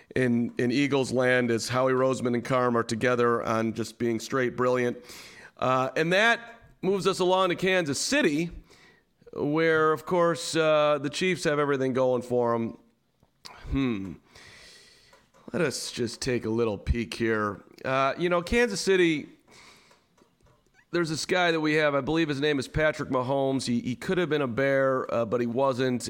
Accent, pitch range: American, 120-150 Hz